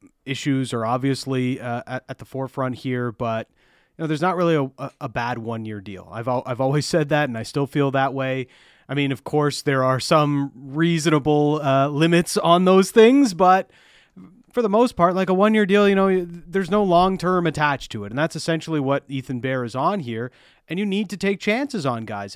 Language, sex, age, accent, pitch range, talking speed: English, male, 30-49, American, 130-170 Hz, 215 wpm